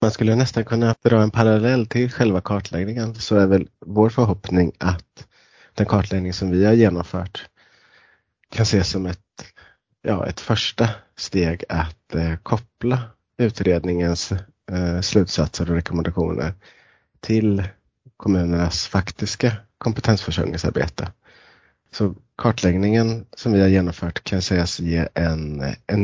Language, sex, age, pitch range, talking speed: Swedish, male, 30-49, 85-105 Hz, 120 wpm